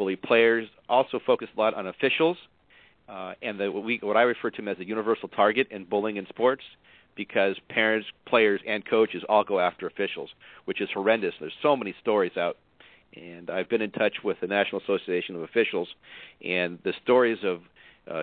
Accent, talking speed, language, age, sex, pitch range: American, 180 wpm, English, 40-59, male, 100-120 Hz